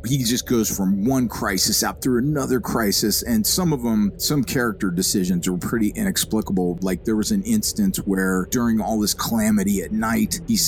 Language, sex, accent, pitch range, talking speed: English, male, American, 100-160 Hz, 180 wpm